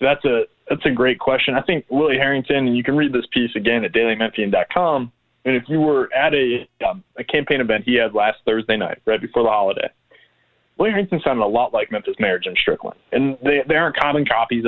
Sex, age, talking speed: male, 20-39, 220 wpm